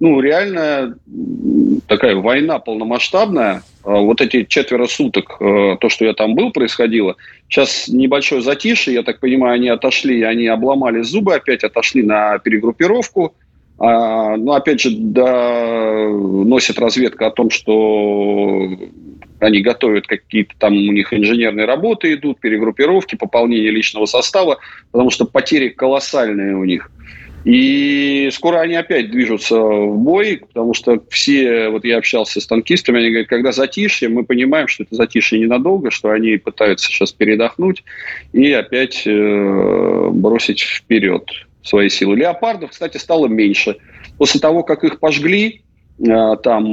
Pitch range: 110-155 Hz